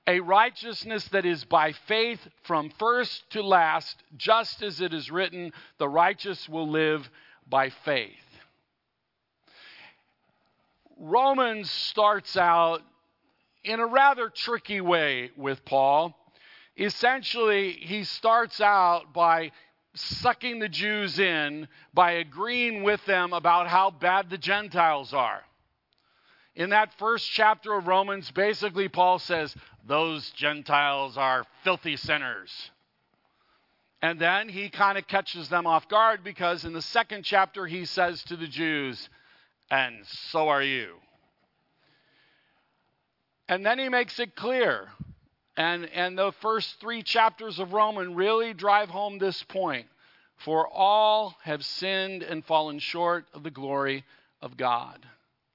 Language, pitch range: English, 160-210 Hz